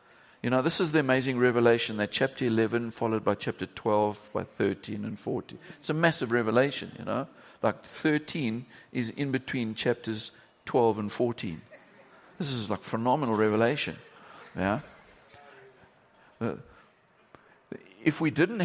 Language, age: English, 50-69